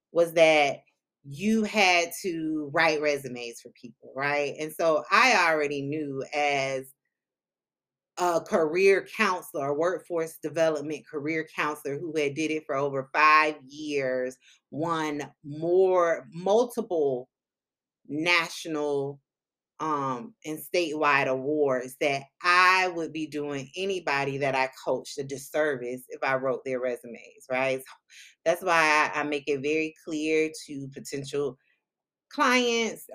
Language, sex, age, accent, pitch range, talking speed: English, female, 30-49, American, 135-160 Hz, 120 wpm